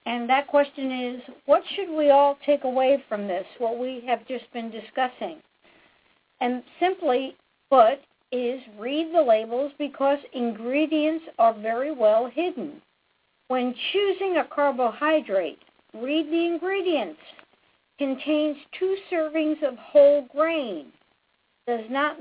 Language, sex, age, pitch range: English, female, 50-69, 225-310 Hz